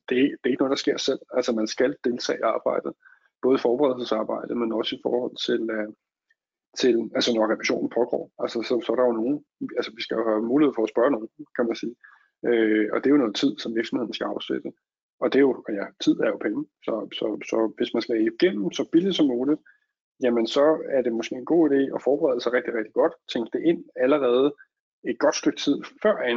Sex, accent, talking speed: male, native, 230 wpm